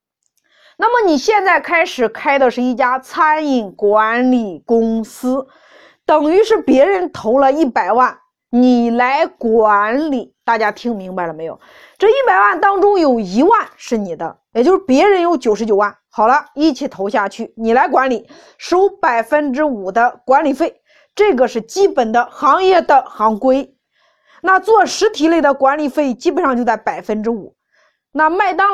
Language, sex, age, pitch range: Chinese, female, 20-39, 230-320 Hz